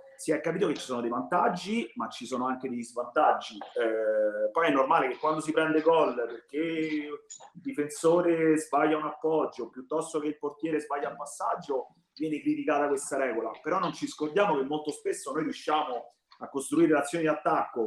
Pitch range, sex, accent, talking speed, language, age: 135-175 Hz, male, native, 180 wpm, Italian, 30-49